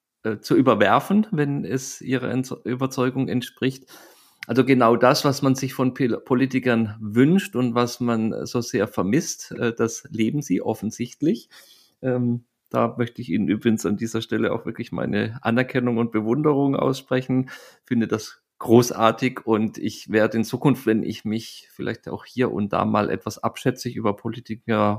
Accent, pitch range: German, 110-130 Hz